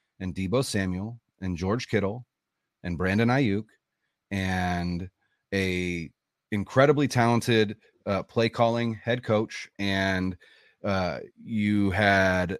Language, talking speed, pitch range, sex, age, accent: English, 105 wpm, 100-130 Hz, male, 30-49, American